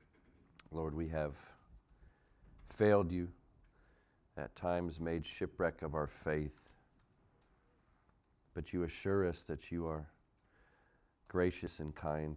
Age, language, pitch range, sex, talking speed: 50-69, English, 75-90 Hz, male, 105 wpm